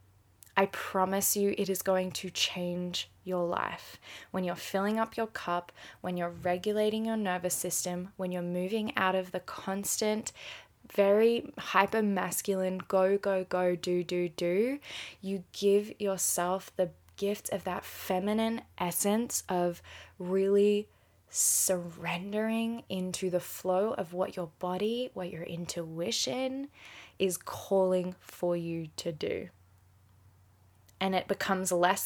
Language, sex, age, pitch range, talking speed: English, female, 10-29, 175-200 Hz, 130 wpm